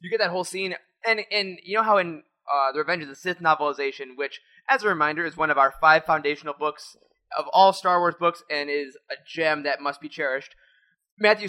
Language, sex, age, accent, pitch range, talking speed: English, male, 20-39, American, 145-190 Hz, 225 wpm